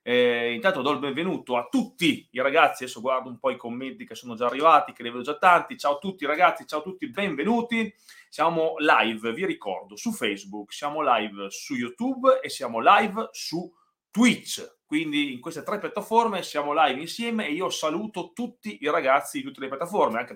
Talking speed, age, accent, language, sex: 195 wpm, 30-49, native, Italian, male